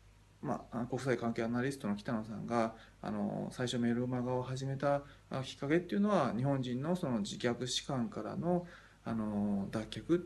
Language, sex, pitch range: Japanese, male, 110-160 Hz